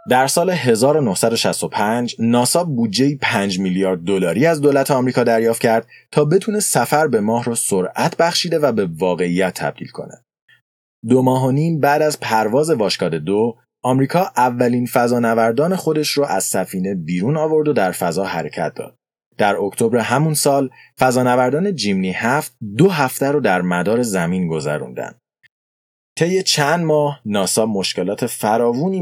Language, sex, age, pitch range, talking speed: Persian, male, 30-49, 100-150 Hz, 145 wpm